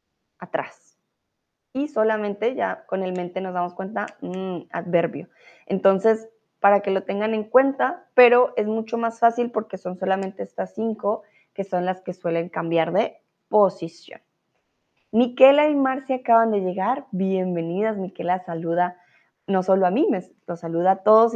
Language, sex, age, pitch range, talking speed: Spanish, female, 20-39, 185-245 Hz, 155 wpm